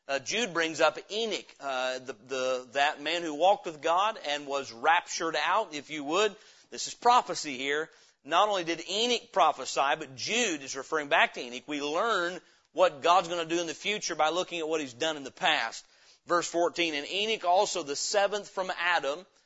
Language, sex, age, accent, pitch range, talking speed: English, male, 40-59, American, 145-185 Hz, 200 wpm